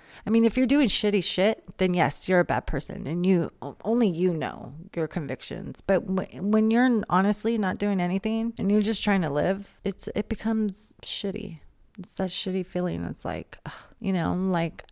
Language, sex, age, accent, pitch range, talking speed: English, female, 30-49, American, 165-205 Hz, 185 wpm